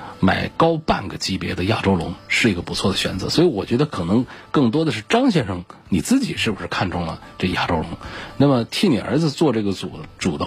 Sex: male